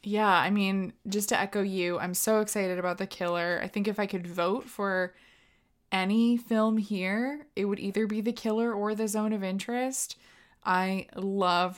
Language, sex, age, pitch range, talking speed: English, female, 20-39, 180-215 Hz, 185 wpm